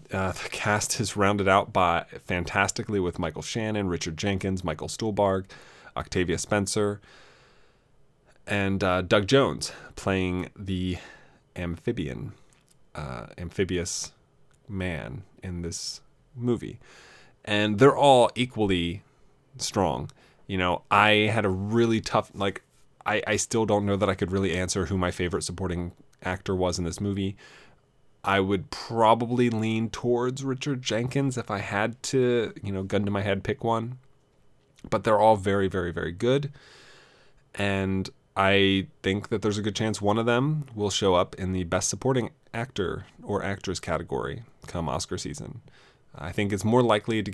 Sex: male